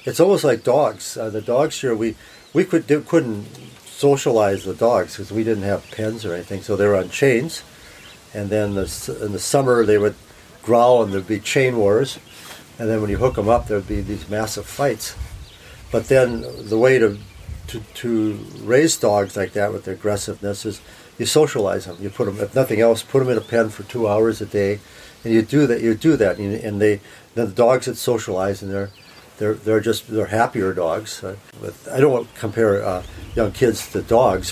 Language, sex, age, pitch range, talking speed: English, male, 50-69, 100-115 Hz, 205 wpm